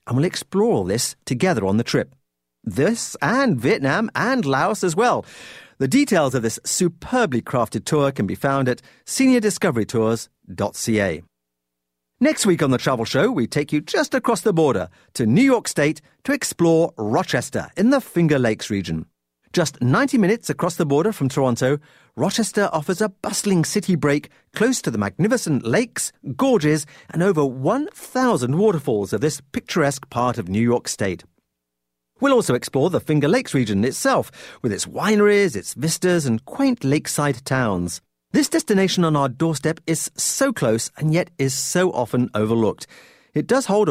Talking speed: 165 wpm